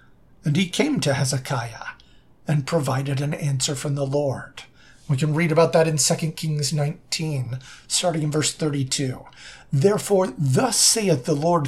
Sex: male